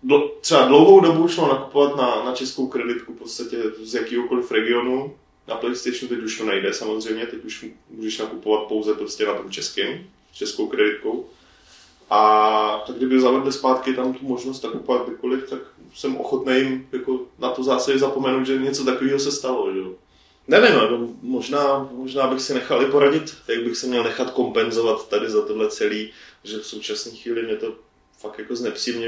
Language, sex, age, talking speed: Czech, male, 20-39, 175 wpm